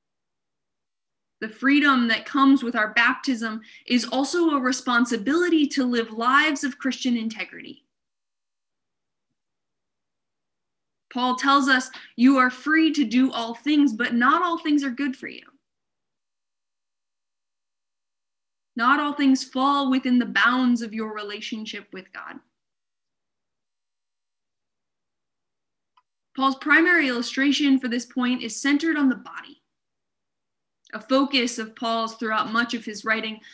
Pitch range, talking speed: 230-280 Hz, 120 wpm